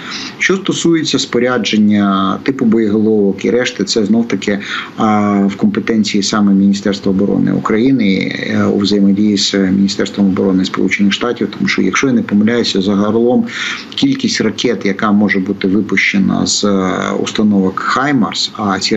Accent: native